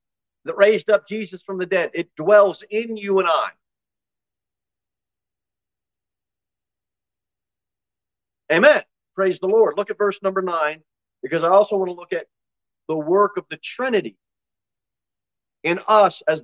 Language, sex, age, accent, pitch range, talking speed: English, male, 50-69, American, 145-200 Hz, 135 wpm